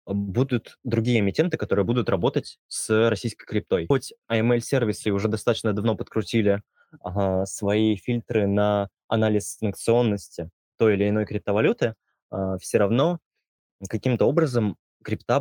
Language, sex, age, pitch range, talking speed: Russian, male, 20-39, 100-120 Hz, 115 wpm